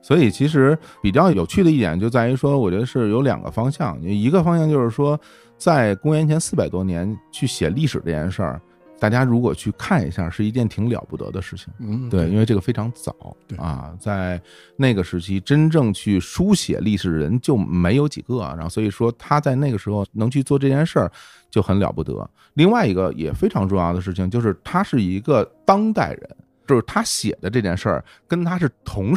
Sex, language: male, Chinese